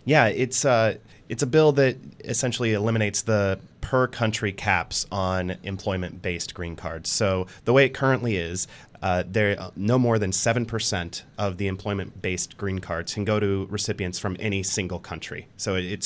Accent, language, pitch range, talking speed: American, English, 90-115 Hz, 160 wpm